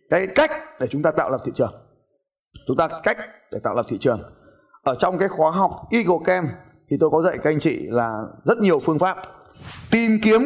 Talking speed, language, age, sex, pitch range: 220 wpm, Vietnamese, 20-39, male, 130-185 Hz